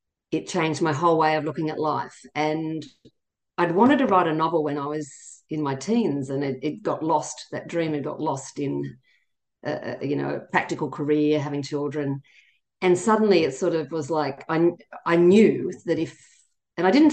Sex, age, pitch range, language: female, 50-69, 145-185 Hz, English